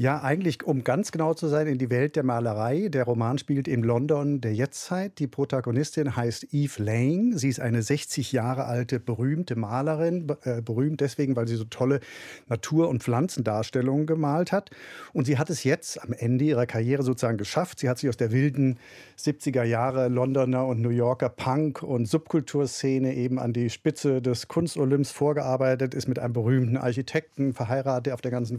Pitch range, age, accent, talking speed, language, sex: 125-155 Hz, 50-69, German, 180 wpm, German, male